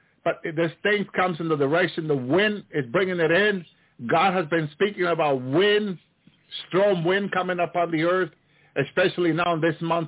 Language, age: English, 50-69